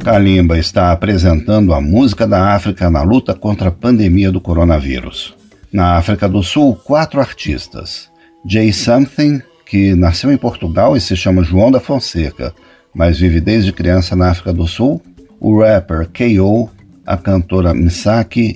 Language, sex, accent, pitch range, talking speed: Portuguese, male, Brazilian, 90-115 Hz, 150 wpm